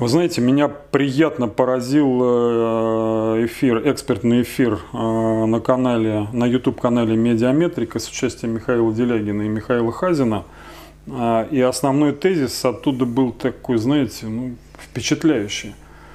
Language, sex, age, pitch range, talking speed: Russian, male, 30-49, 115-145 Hz, 100 wpm